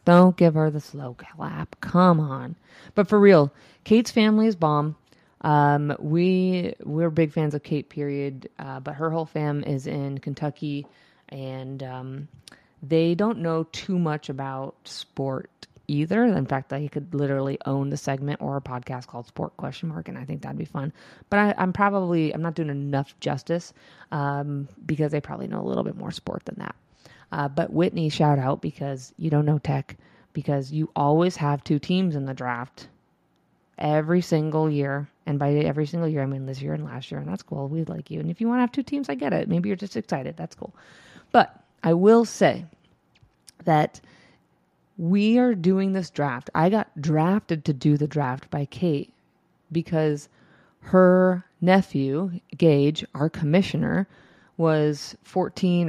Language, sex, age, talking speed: English, female, 30-49, 180 wpm